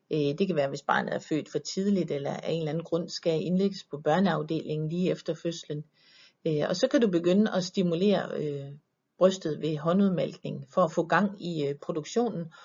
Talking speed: 180 wpm